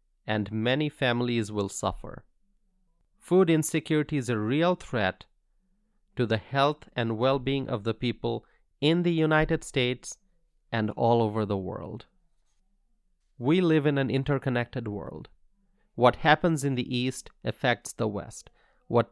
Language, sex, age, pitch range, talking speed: English, male, 30-49, 115-160 Hz, 135 wpm